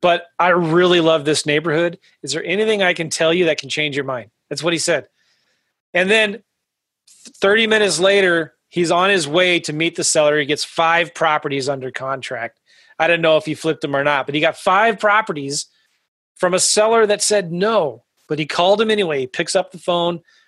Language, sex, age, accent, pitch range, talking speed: English, male, 30-49, American, 155-195 Hz, 210 wpm